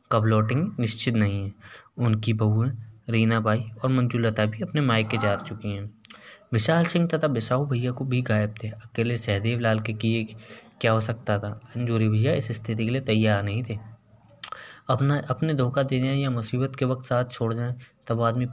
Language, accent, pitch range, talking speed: Hindi, native, 110-125 Hz, 185 wpm